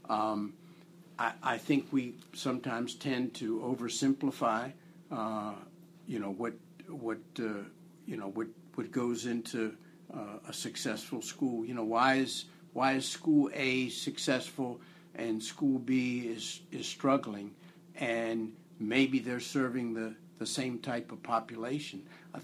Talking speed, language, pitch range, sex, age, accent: 135 wpm, English, 115-170 Hz, male, 60-79, American